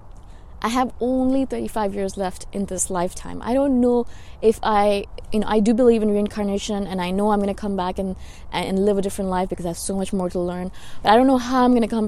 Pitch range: 185-220 Hz